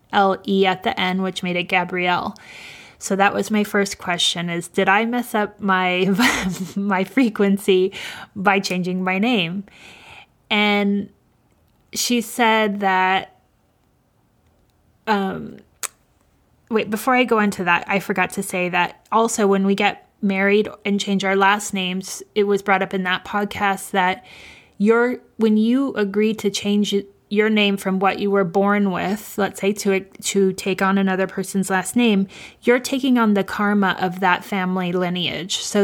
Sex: female